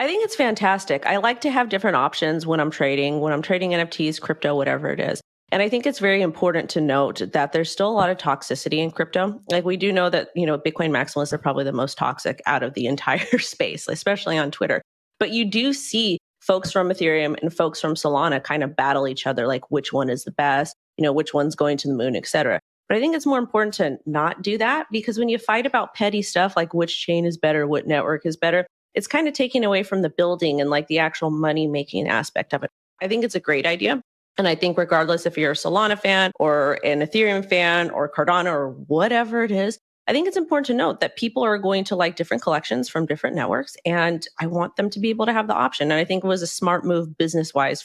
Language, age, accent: English, 30-49, American